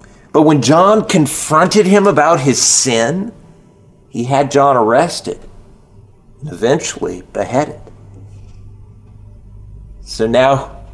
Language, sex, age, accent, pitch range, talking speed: English, male, 40-59, American, 110-175 Hz, 95 wpm